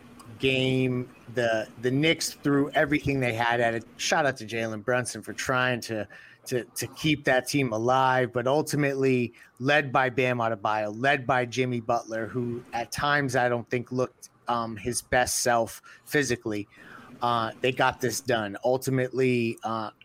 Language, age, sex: English, 30-49, male